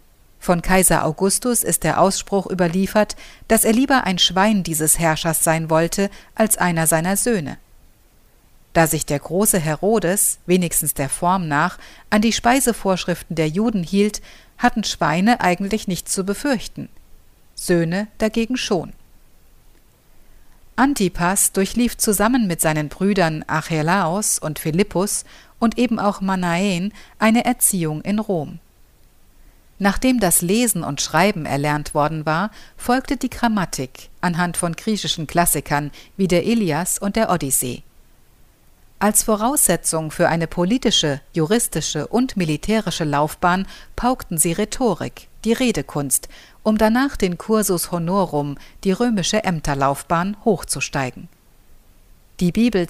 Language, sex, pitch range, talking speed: German, female, 160-215 Hz, 120 wpm